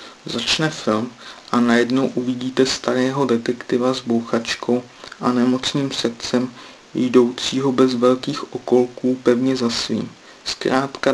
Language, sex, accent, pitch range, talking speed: Czech, male, native, 120-130 Hz, 110 wpm